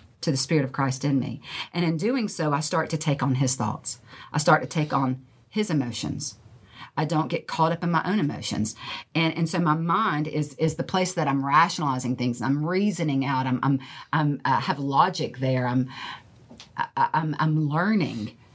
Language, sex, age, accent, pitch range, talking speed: English, female, 40-59, American, 130-180 Hz, 200 wpm